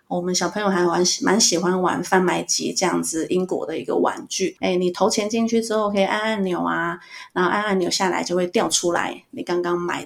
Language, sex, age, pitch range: Chinese, female, 20-39, 175-210 Hz